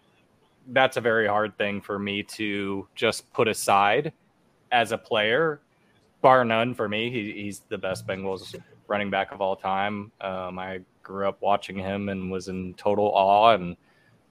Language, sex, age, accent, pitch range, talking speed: English, male, 20-39, American, 100-120 Hz, 165 wpm